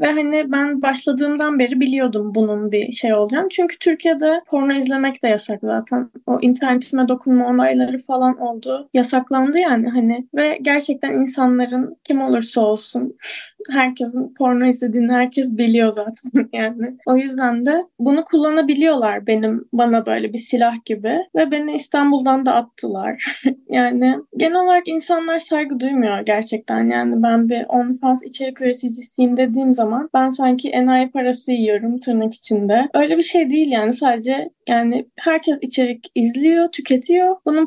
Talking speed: 140 wpm